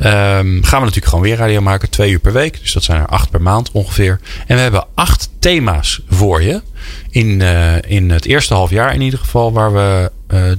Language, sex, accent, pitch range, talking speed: Dutch, male, Dutch, 85-105 Hz, 225 wpm